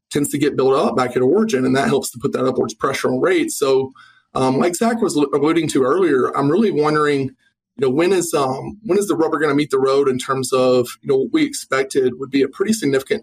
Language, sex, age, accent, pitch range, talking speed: English, male, 20-39, American, 135-220 Hz, 255 wpm